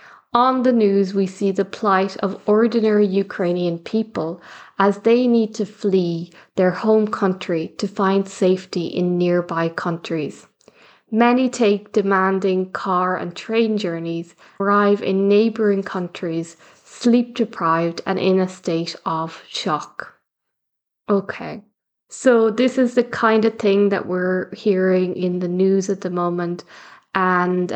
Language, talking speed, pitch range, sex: English, 130 wpm, 185-210 Hz, female